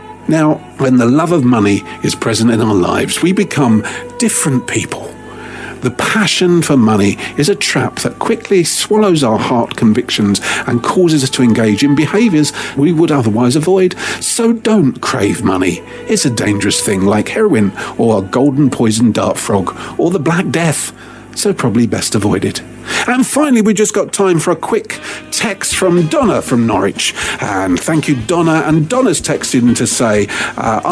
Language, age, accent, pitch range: English, 50-69, British, 115-185 Hz